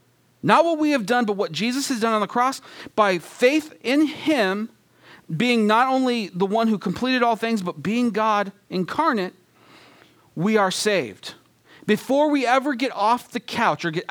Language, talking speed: English, 180 wpm